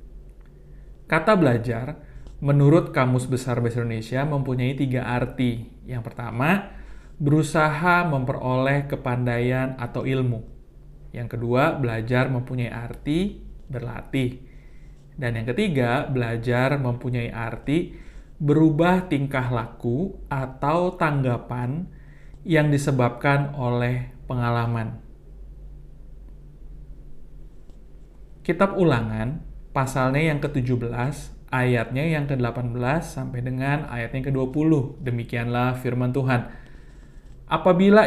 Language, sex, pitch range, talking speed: Indonesian, male, 125-150 Hz, 85 wpm